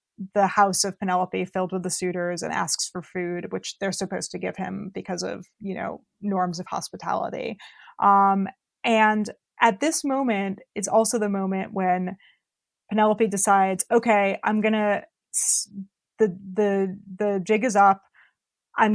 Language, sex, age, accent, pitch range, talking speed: English, female, 20-39, American, 190-215 Hz, 150 wpm